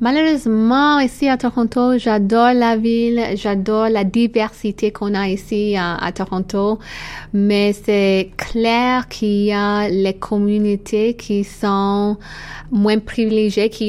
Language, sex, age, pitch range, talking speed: French, female, 20-39, 190-215 Hz, 125 wpm